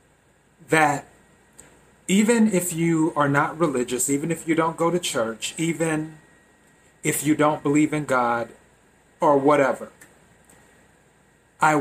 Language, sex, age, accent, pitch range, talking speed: English, male, 30-49, American, 130-160 Hz, 120 wpm